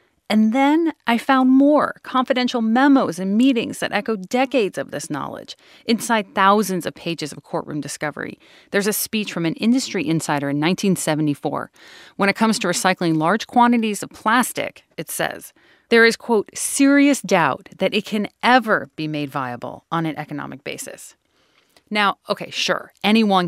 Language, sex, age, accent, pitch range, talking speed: English, female, 30-49, American, 180-260 Hz, 160 wpm